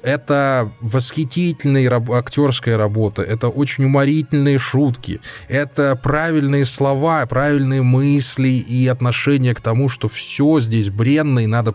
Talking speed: 115 wpm